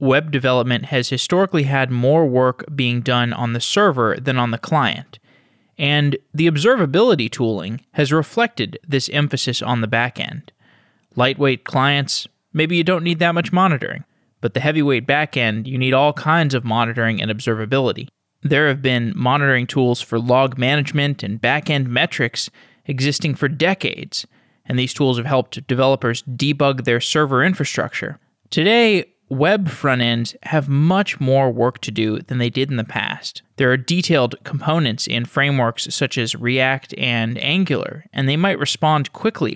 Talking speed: 160 wpm